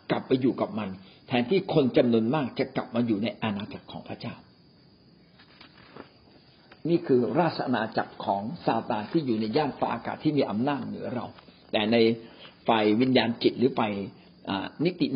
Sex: male